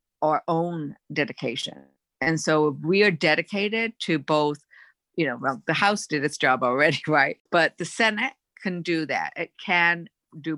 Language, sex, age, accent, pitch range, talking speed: English, female, 50-69, American, 150-190 Hz, 165 wpm